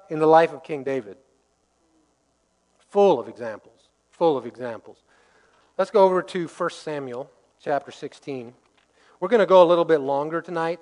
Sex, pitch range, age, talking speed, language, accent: male, 145-190 Hz, 40-59, 160 wpm, English, American